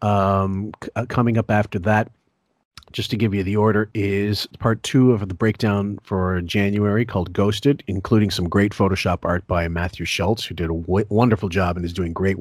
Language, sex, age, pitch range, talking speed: English, male, 40-59, 95-115 Hz, 200 wpm